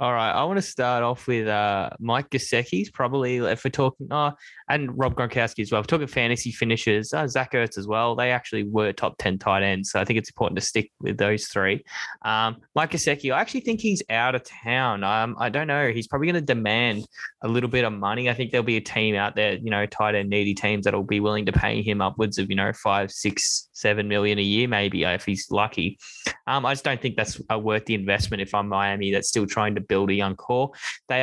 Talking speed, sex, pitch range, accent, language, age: 240 wpm, male, 105-130 Hz, Australian, English, 10-29